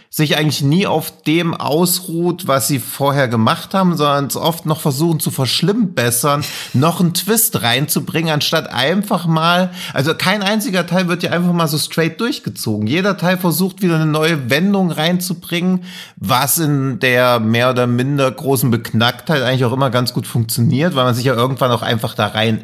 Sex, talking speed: male, 180 wpm